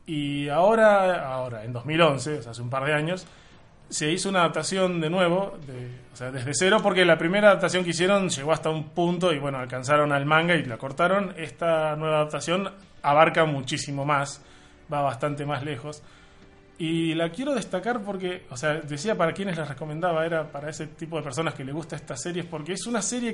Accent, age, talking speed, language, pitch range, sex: Argentinian, 20-39, 200 wpm, Spanish, 145-180 Hz, male